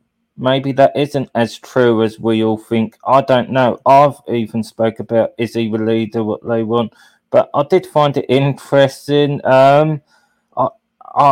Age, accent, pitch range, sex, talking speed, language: 20-39, British, 115-135 Hz, male, 165 wpm, English